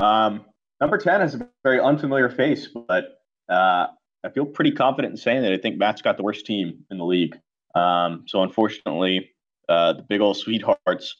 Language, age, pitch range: English, 30-49, 95-130 Hz